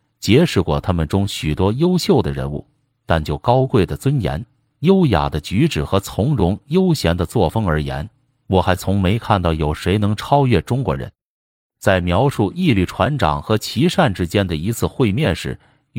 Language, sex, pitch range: Chinese, male, 80-130 Hz